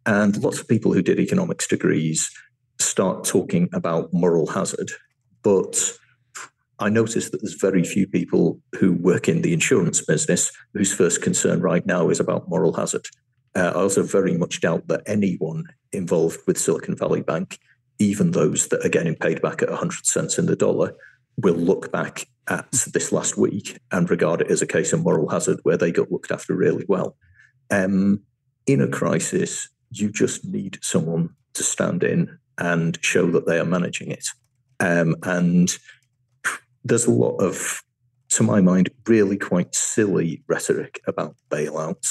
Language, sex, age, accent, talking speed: English, male, 50-69, British, 170 wpm